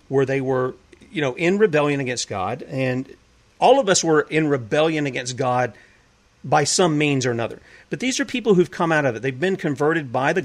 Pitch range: 130-165 Hz